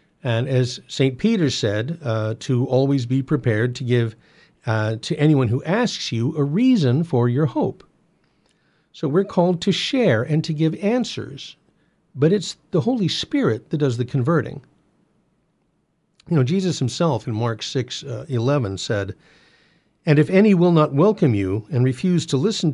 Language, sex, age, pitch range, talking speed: English, male, 50-69, 120-160 Hz, 165 wpm